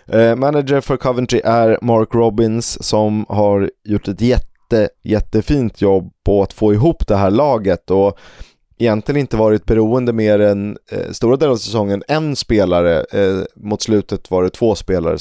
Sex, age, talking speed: male, 20-39, 165 wpm